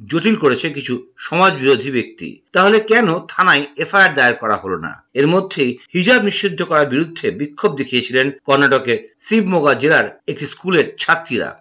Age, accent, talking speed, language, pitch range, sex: 50-69, native, 55 wpm, Bengali, 140-220 Hz, male